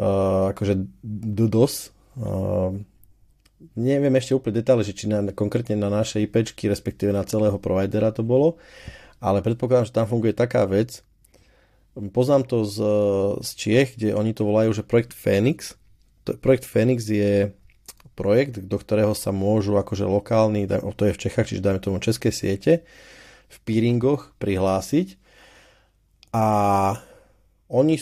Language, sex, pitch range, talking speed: Slovak, male, 100-120 Hz, 135 wpm